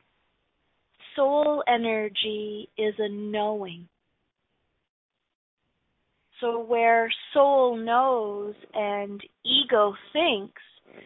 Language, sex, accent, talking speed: English, female, American, 65 wpm